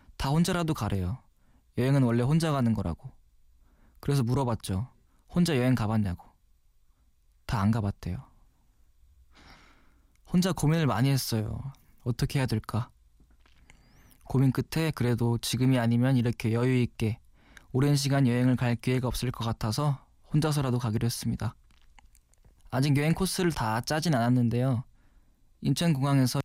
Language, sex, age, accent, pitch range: Korean, male, 20-39, native, 110-135 Hz